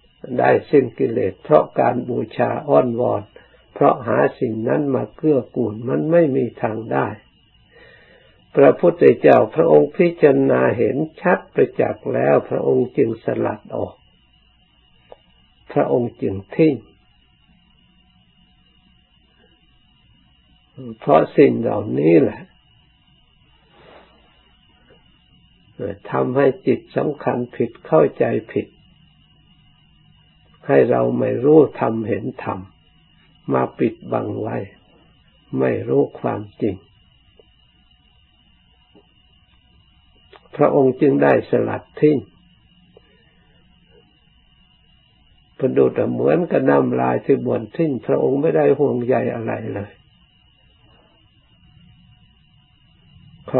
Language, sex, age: Thai, male, 60-79